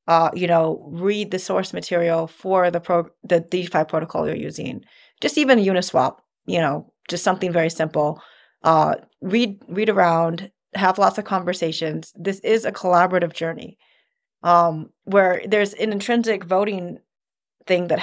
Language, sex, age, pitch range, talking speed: English, female, 30-49, 170-200 Hz, 150 wpm